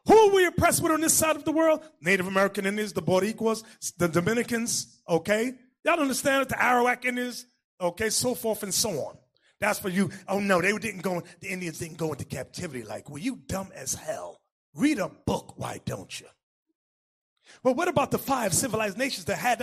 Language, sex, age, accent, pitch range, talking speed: English, male, 30-49, American, 180-270 Hz, 205 wpm